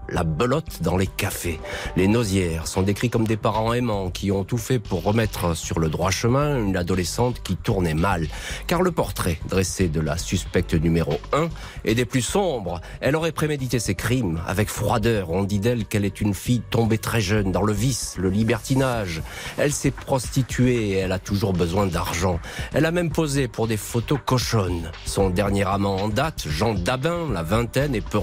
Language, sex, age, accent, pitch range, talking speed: French, male, 40-59, French, 90-120 Hz, 195 wpm